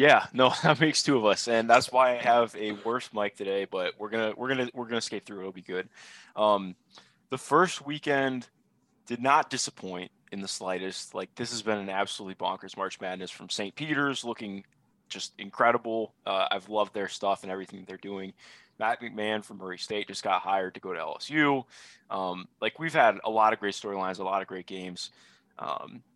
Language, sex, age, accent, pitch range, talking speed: English, male, 20-39, American, 95-130 Hz, 205 wpm